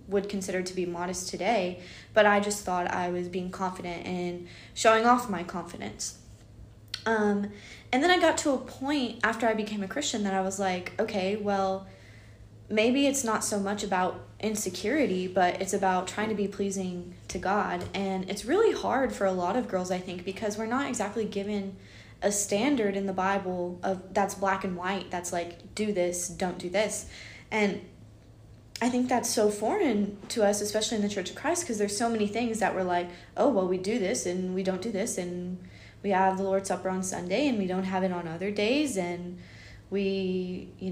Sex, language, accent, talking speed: female, English, American, 200 wpm